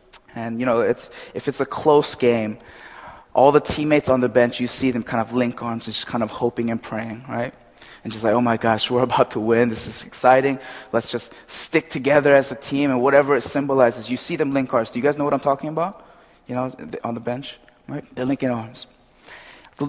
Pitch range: 125-165 Hz